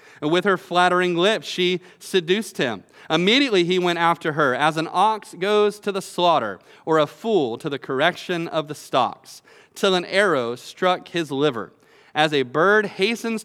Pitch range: 135-180 Hz